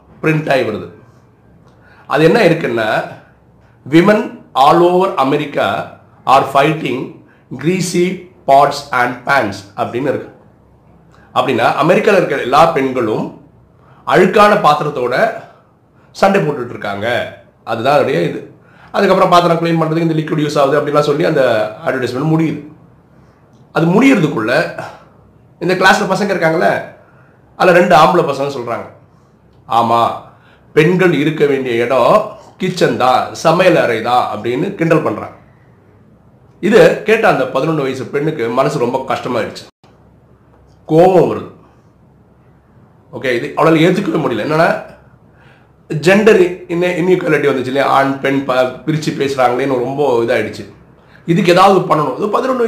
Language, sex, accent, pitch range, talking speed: Tamil, male, native, 135-180 Hz, 110 wpm